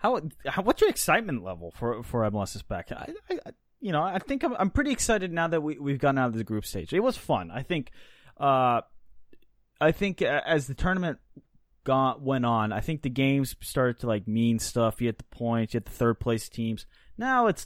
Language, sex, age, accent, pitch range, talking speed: English, male, 20-39, American, 110-145 Hz, 225 wpm